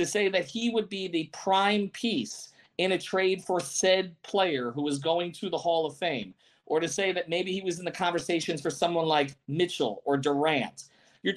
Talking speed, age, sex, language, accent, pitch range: 210 wpm, 40-59, male, English, American, 165-235 Hz